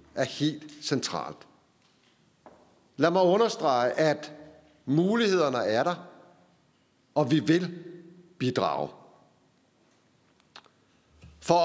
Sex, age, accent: male, 60-79, native